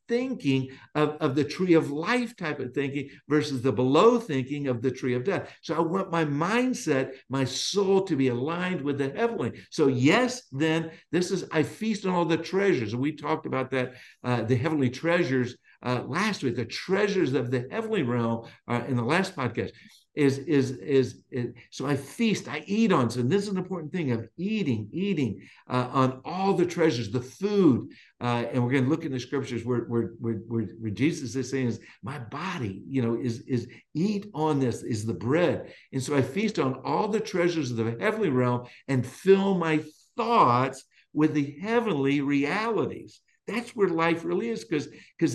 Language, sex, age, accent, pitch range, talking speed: English, male, 60-79, American, 125-180 Hz, 195 wpm